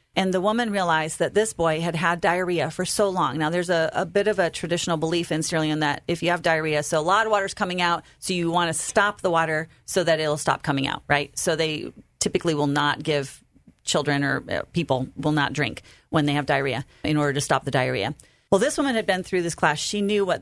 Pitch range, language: 145-185 Hz, English